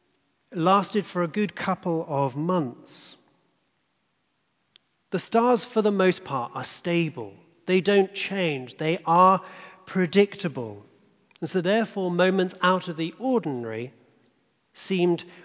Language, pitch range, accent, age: English, 155-190 Hz, British, 40-59